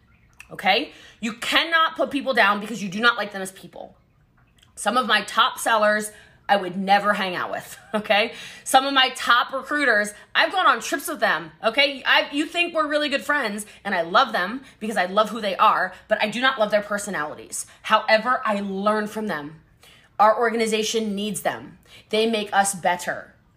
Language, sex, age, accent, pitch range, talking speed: English, female, 20-39, American, 205-265 Hz, 190 wpm